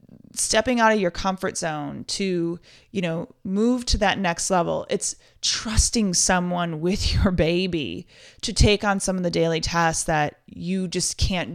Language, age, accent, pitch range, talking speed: English, 20-39, American, 165-195 Hz, 165 wpm